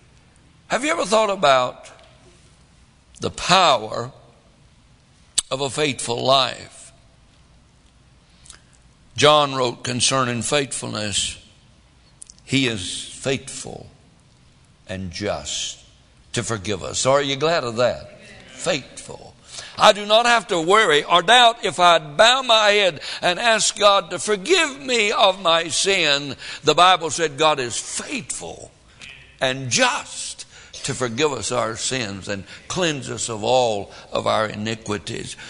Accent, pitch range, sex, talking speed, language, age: American, 115-170 Hz, male, 120 wpm, English, 60-79